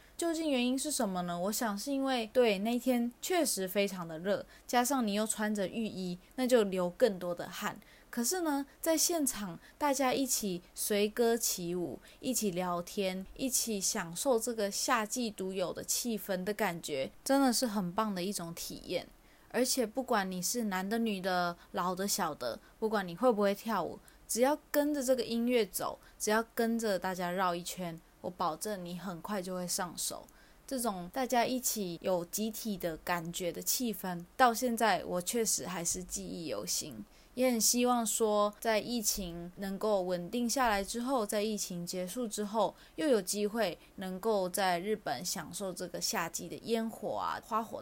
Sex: female